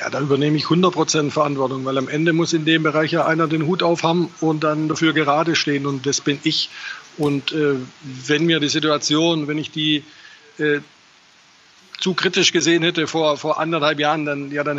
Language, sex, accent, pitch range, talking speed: German, male, German, 140-160 Hz, 195 wpm